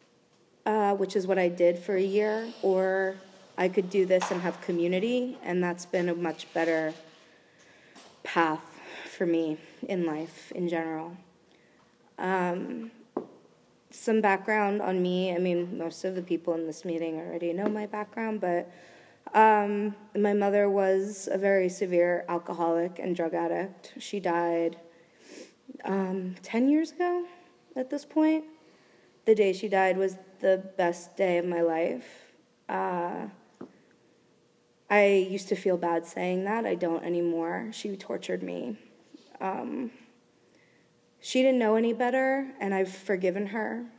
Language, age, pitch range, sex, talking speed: English, 20-39, 175-210 Hz, female, 140 wpm